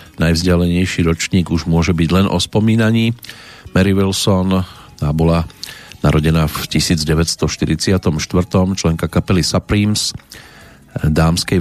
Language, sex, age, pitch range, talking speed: Slovak, male, 40-59, 80-100 Hz, 100 wpm